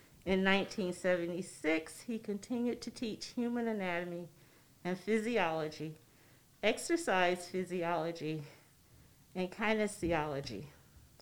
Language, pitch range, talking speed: English, 165-225 Hz, 75 wpm